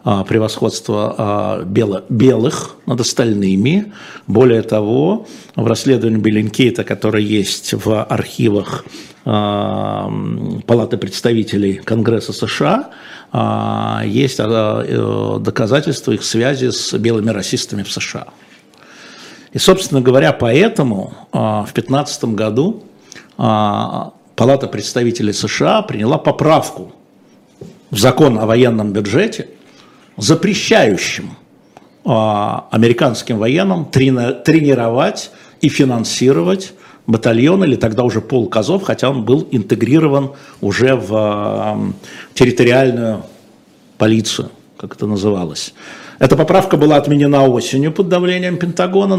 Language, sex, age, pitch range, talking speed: Russian, male, 60-79, 110-135 Hz, 90 wpm